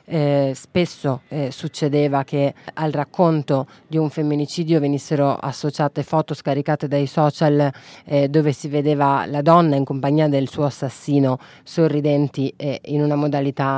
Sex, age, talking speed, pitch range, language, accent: female, 30-49, 140 wpm, 140-155 Hz, Italian, native